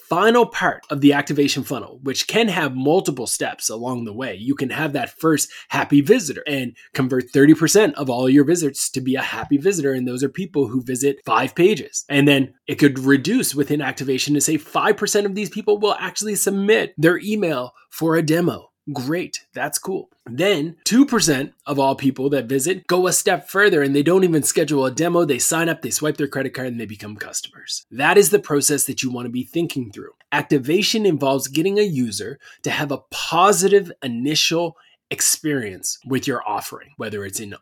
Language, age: English, 20-39